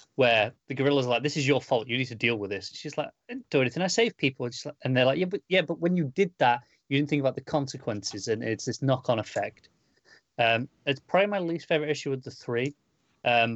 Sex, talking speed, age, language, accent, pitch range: male, 255 wpm, 30-49, English, British, 115-145 Hz